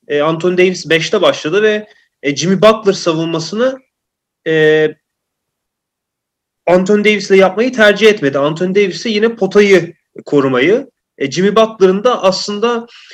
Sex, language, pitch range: male, Turkish, 150-205 Hz